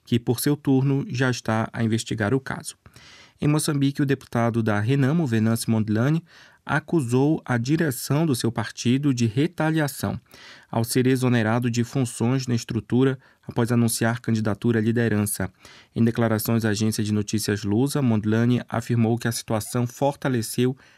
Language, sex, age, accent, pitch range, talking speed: Portuguese, male, 20-39, Brazilian, 110-130 Hz, 145 wpm